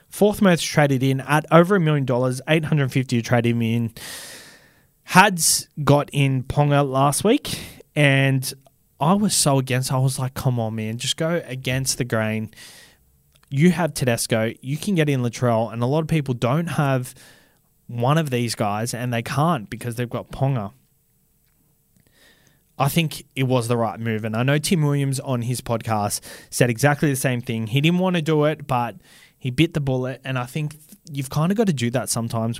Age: 20-39